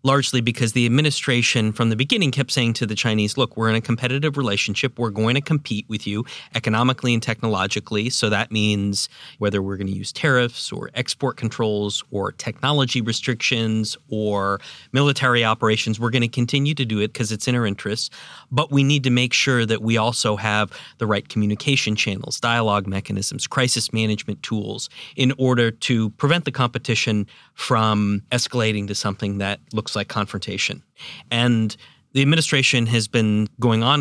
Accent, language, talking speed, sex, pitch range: American, English, 170 wpm, male, 105-130 Hz